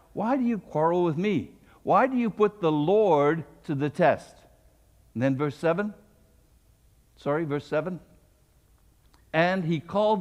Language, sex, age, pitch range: English, male, 60-79, 135-175 Hz